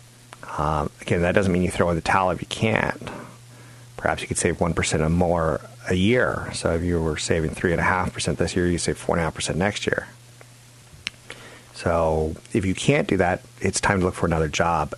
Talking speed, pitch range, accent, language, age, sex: 220 wpm, 85-120 Hz, American, English, 40-59, male